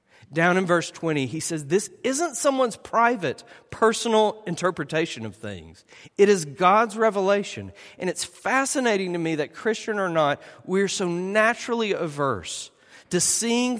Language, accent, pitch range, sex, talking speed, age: English, American, 165-220 Hz, male, 145 wpm, 40-59